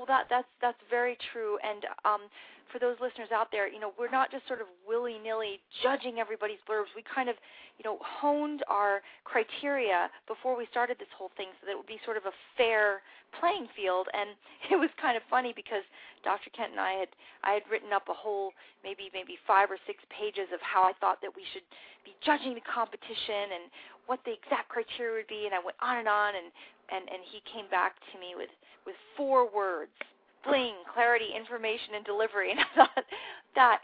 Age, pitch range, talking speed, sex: 30-49, 200-270 Hz, 210 wpm, female